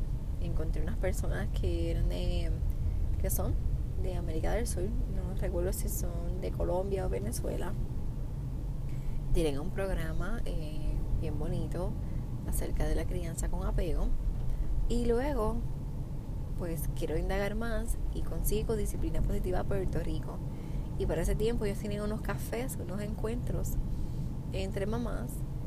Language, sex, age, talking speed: Spanish, female, 20-39, 130 wpm